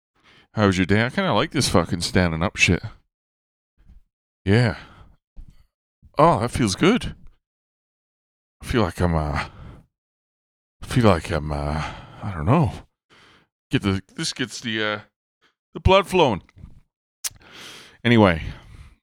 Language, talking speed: English, 130 wpm